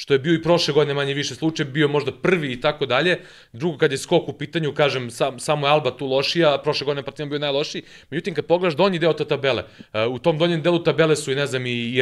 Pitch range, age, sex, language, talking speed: 130-160 Hz, 30-49, male, English, 250 wpm